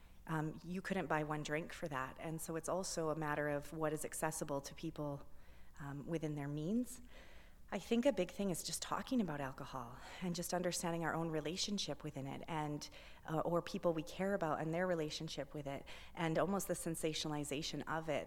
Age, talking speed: 30-49, 195 wpm